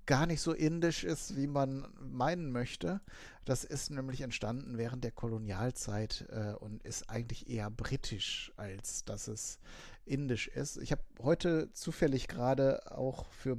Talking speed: 150 wpm